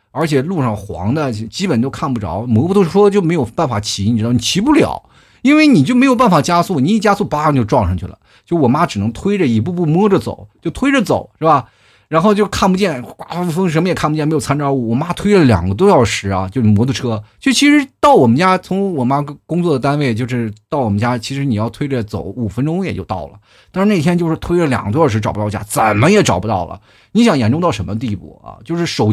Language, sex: Chinese, male